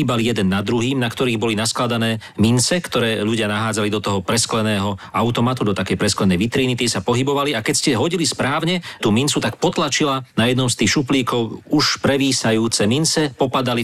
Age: 40-59